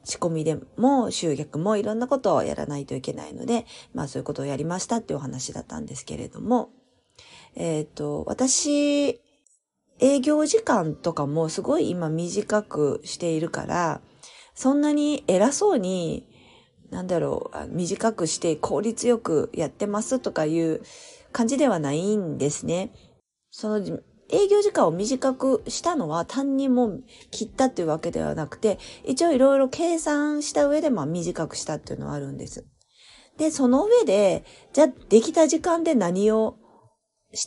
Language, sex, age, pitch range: Japanese, female, 40-59, 175-280 Hz